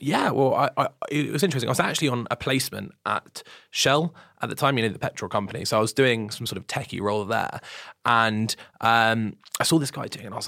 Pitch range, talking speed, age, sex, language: 110-135 Hz, 250 wpm, 20-39, male, English